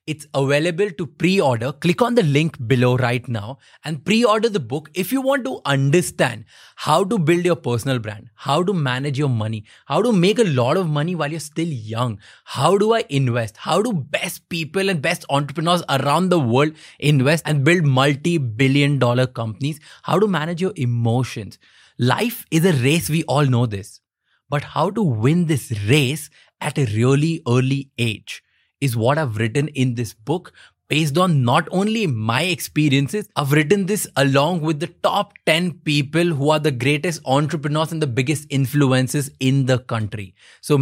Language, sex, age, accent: Hindi, male, 20-39, native